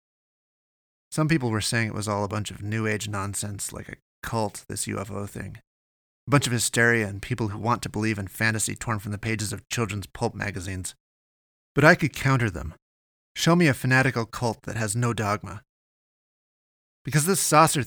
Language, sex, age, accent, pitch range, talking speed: English, male, 30-49, American, 100-130 Hz, 185 wpm